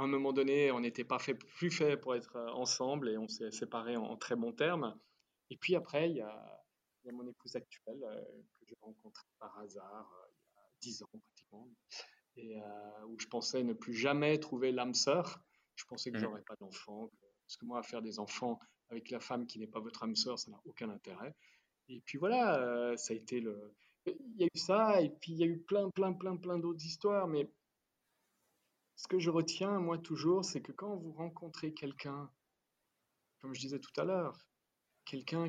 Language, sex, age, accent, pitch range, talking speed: French, male, 20-39, French, 125-165 Hz, 215 wpm